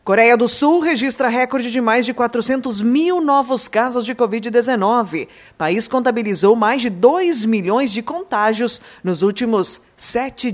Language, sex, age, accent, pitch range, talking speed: Portuguese, female, 20-39, Brazilian, 195-245 Hz, 150 wpm